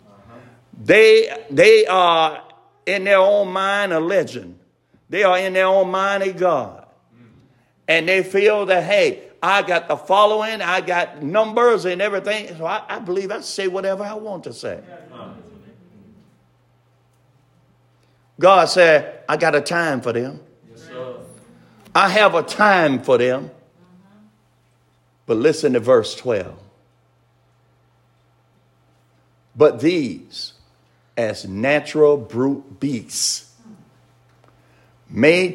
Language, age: English, 50-69